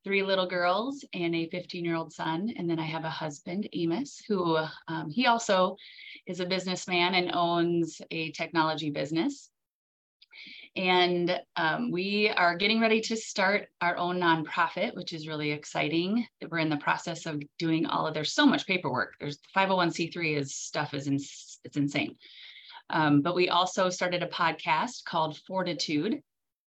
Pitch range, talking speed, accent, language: 155-180 Hz, 165 wpm, American, English